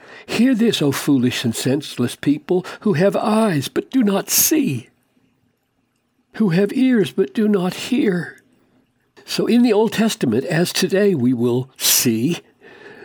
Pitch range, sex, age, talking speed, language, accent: 155-215 Hz, male, 60-79, 145 wpm, English, American